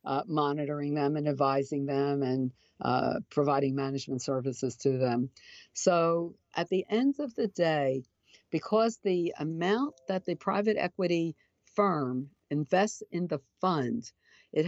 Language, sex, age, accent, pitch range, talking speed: English, female, 50-69, American, 140-190 Hz, 135 wpm